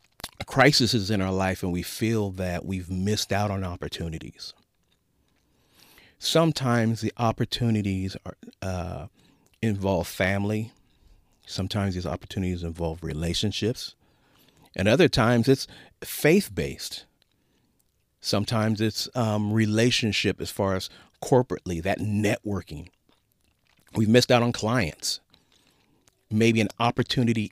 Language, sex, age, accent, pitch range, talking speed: English, male, 40-59, American, 95-115 Hz, 110 wpm